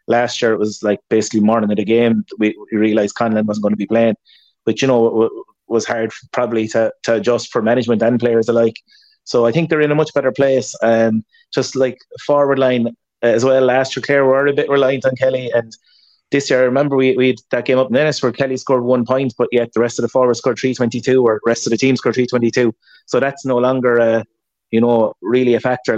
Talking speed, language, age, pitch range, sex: 245 wpm, English, 30-49, 115-130 Hz, male